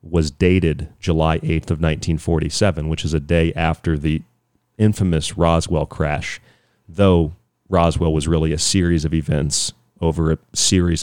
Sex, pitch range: male, 80-95 Hz